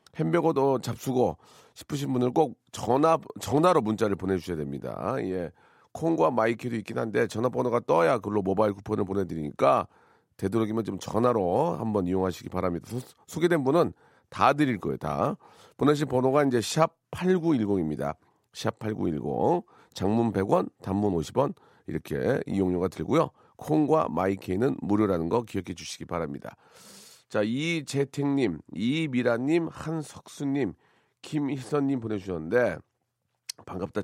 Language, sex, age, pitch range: Korean, male, 40-59, 95-135 Hz